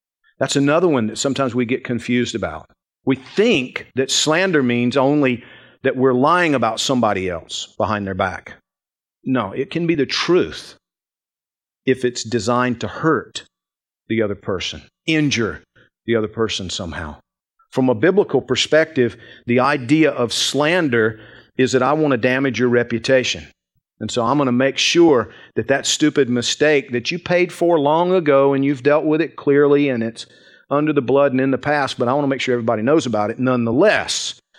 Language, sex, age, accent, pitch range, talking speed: English, male, 40-59, American, 115-145 Hz, 175 wpm